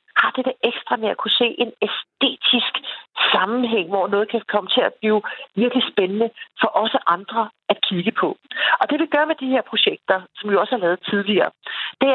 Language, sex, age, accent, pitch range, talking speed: Danish, female, 40-59, native, 200-260 Hz, 205 wpm